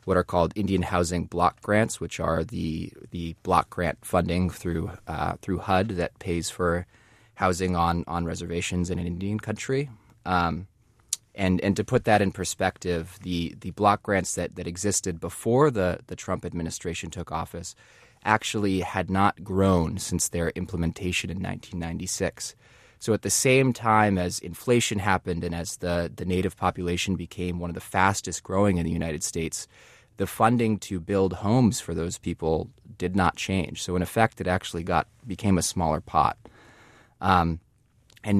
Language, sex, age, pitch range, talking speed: English, male, 20-39, 85-105 Hz, 165 wpm